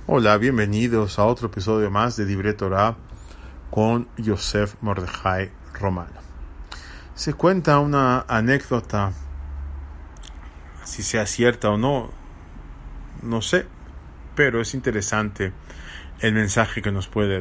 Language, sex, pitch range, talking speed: English, male, 90-125 Hz, 110 wpm